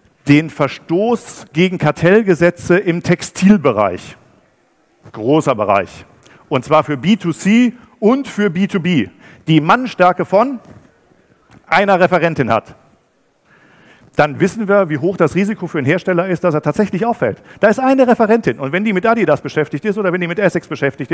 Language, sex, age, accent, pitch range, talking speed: German, male, 50-69, German, 145-185 Hz, 150 wpm